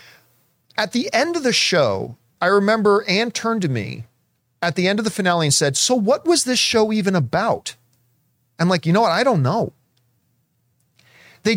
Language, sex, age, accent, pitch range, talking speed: English, male, 40-59, American, 150-225 Hz, 185 wpm